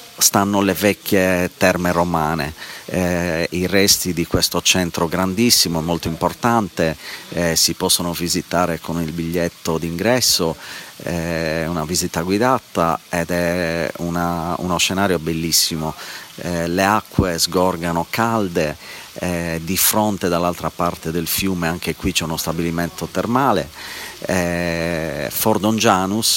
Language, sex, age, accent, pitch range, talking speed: Italian, male, 40-59, native, 85-95 Hz, 110 wpm